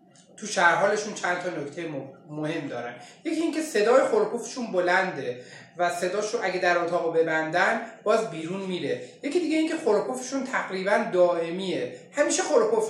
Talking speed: 140 wpm